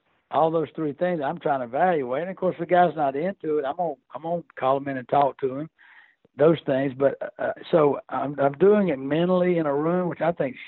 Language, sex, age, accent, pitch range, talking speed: English, male, 60-79, American, 130-160 Hz, 245 wpm